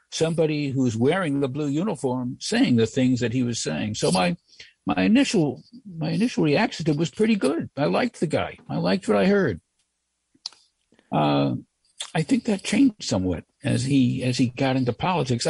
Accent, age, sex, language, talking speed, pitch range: American, 60-79, male, English, 175 wpm, 120-170 Hz